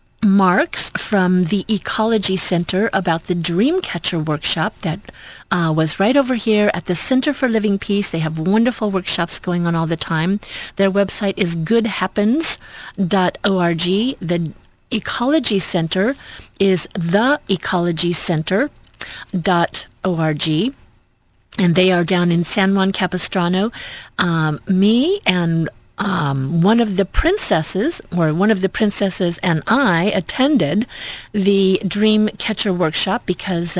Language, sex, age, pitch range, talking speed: English, female, 40-59, 165-205 Hz, 120 wpm